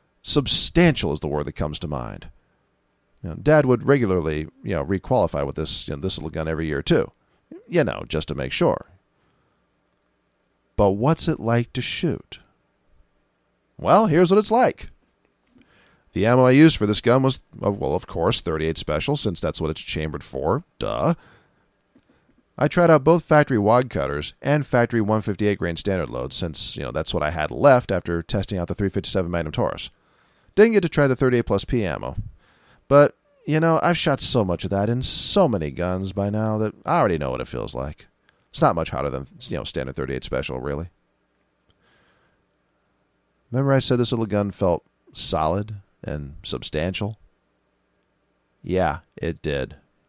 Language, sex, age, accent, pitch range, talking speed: English, male, 40-59, American, 75-125 Hz, 175 wpm